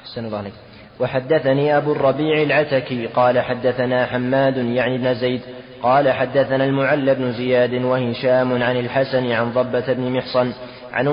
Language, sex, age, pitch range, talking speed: Arabic, male, 20-39, 125-135 Hz, 125 wpm